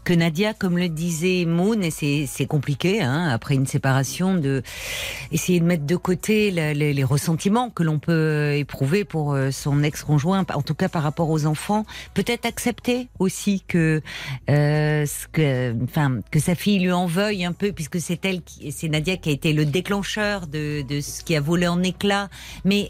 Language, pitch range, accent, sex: French, 150-200 Hz, French, female